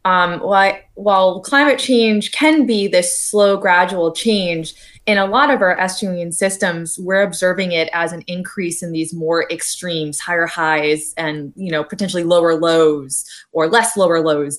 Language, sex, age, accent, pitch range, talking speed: English, female, 20-39, American, 165-210 Hz, 170 wpm